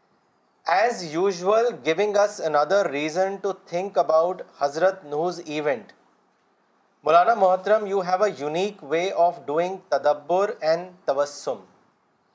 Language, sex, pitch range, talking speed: Urdu, male, 160-205 Hz, 115 wpm